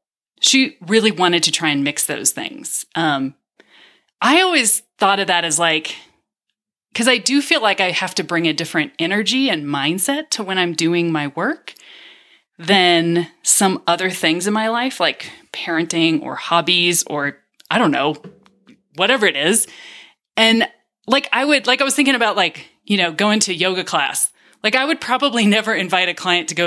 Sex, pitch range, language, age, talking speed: female, 175-255 Hz, English, 30-49, 180 wpm